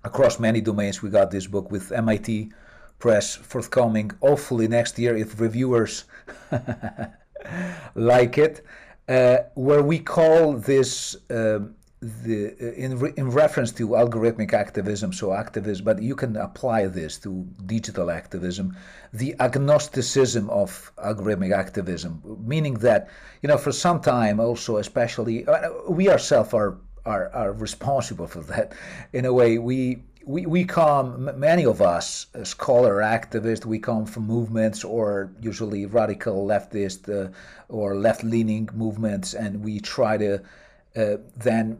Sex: male